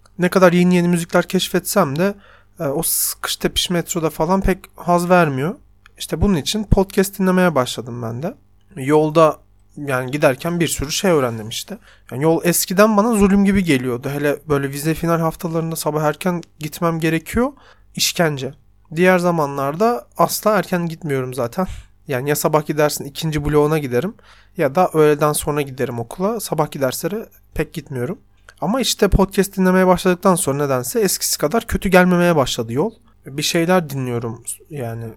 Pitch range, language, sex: 140-185 Hz, Turkish, male